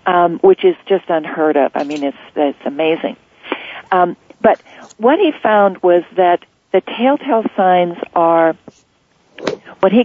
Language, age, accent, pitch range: English, 50-69, American, 170-210 Hz